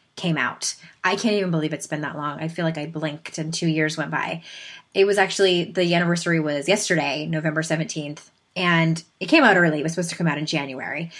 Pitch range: 160-195 Hz